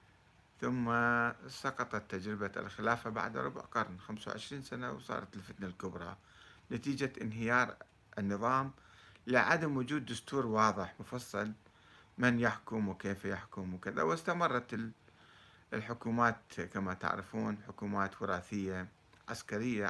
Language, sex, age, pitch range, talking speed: Arabic, male, 50-69, 95-120 Hz, 95 wpm